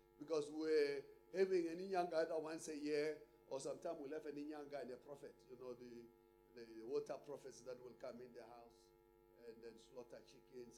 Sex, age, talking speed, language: male, 50-69, 185 wpm, English